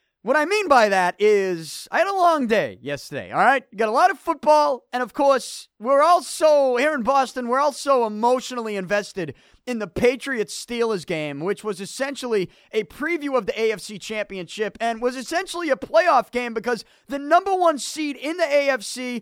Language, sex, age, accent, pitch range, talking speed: English, male, 30-49, American, 205-265 Hz, 185 wpm